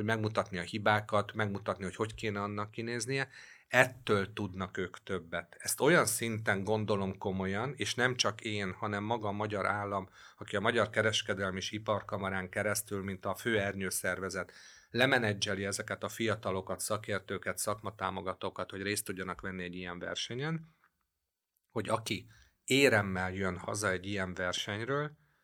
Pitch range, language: 95-110 Hz, Hungarian